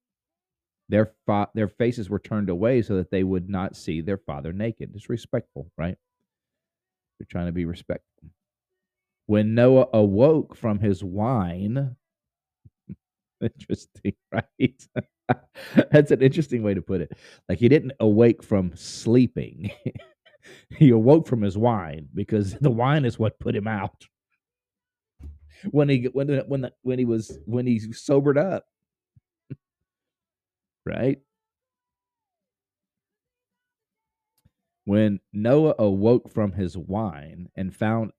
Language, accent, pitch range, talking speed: English, American, 100-125 Hz, 125 wpm